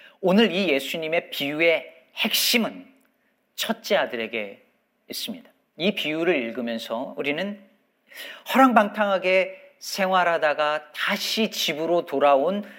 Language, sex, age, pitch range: Korean, male, 40-59, 165-250 Hz